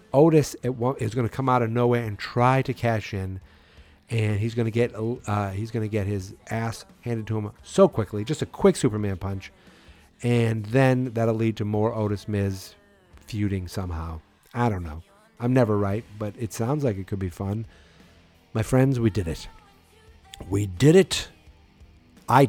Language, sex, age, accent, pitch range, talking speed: English, male, 50-69, American, 95-125 Hz, 170 wpm